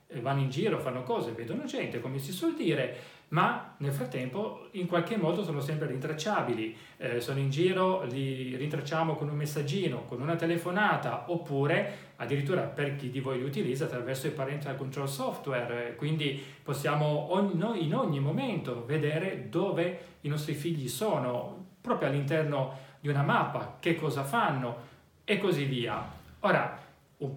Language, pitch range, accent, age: Italian, 135-165 Hz, native, 30-49